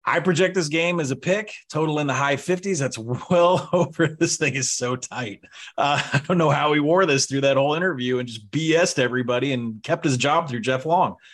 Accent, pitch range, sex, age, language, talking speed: American, 125-160 Hz, male, 30-49, English, 230 wpm